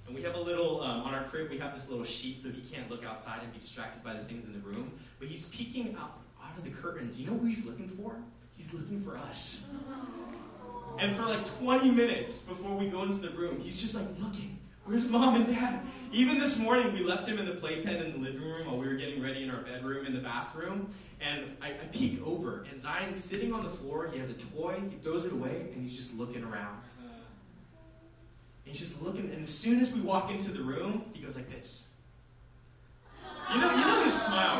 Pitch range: 120-200 Hz